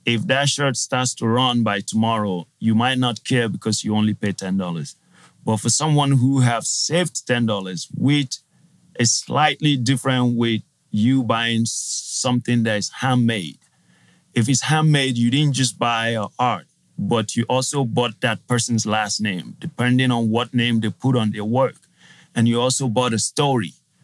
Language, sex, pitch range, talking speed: English, male, 115-135 Hz, 165 wpm